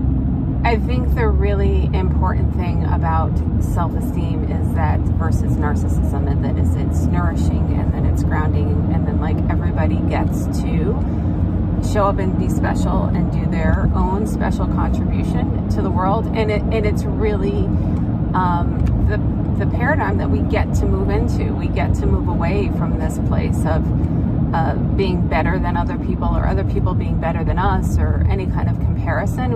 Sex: female